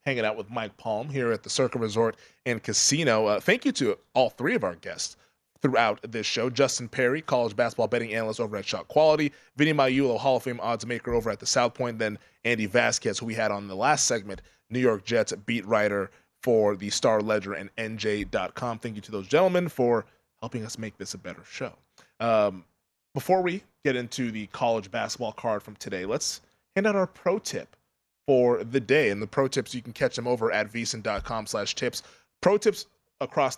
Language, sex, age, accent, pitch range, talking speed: English, male, 20-39, American, 110-145 Hz, 205 wpm